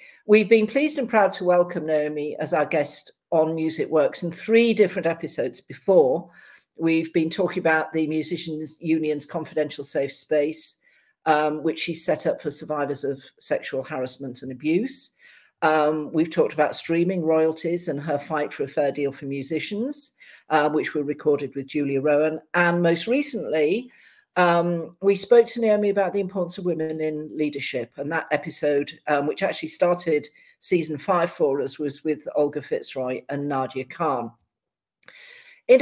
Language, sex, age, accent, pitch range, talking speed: English, female, 50-69, British, 150-190 Hz, 165 wpm